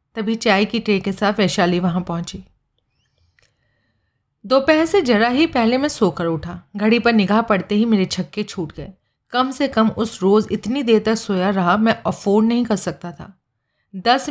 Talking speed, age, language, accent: 180 wpm, 40-59, Hindi, native